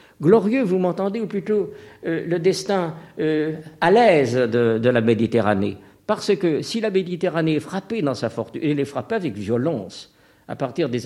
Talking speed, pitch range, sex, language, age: 180 wpm, 120-185 Hz, male, French, 60-79